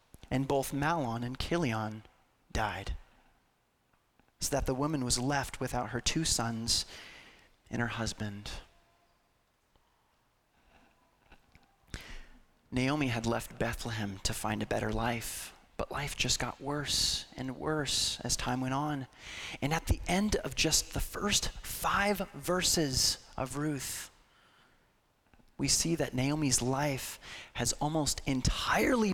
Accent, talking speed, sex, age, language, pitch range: American, 120 wpm, male, 30-49, English, 110-140 Hz